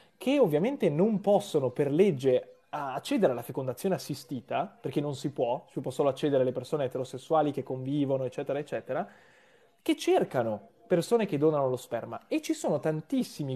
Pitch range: 135-200 Hz